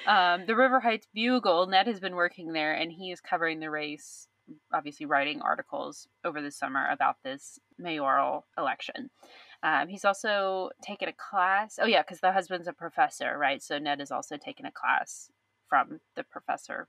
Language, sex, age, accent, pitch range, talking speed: English, female, 20-39, American, 160-205 Hz, 180 wpm